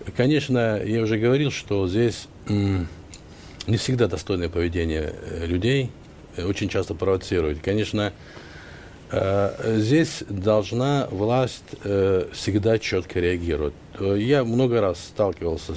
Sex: male